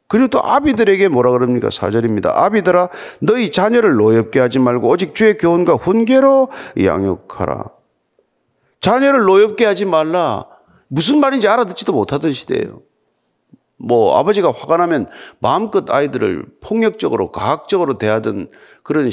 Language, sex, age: Korean, male, 40-59